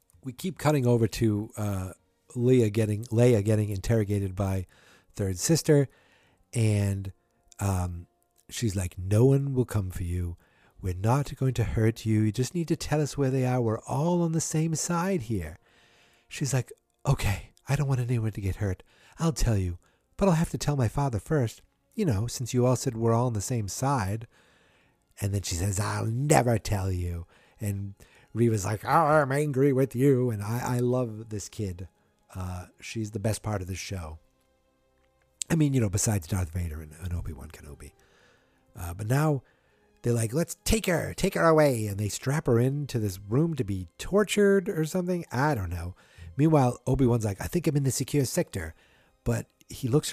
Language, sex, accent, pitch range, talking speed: English, male, American, 100-140 Hz, 190 wpm